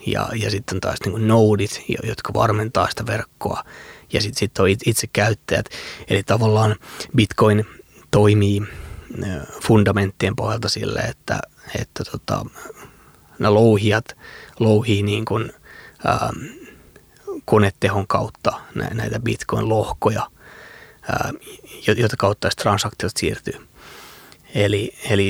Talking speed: 95 wpm